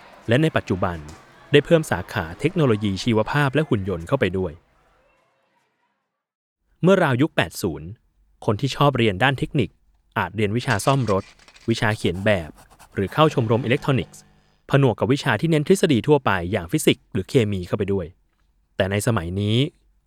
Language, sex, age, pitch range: Thai, male, 20-39, 100-135 Hz